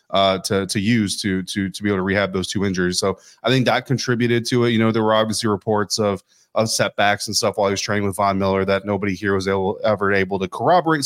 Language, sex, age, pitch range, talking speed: English, male, 20-39, 95-115 Hz, 255 wpm